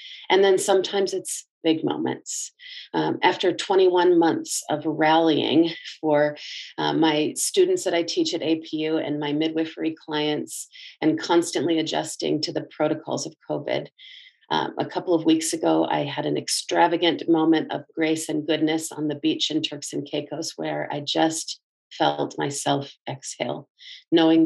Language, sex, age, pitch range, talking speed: English, female, 40-59, 155-200 Hz, 150 wpm